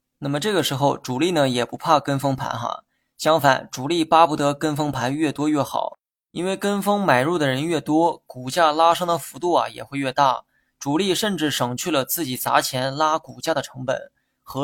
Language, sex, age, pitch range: Chinese, male, 20-39, 130-160 Hz